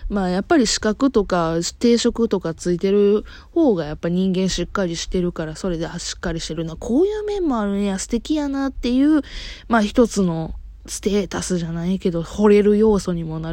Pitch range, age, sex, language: 175-255 Hz, 20-39, female, Japanese